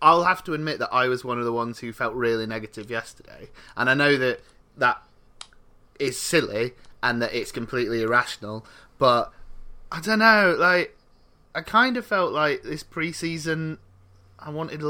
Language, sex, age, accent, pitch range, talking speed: English, male, 30-49, British, 120-155 Hz, 175 wpm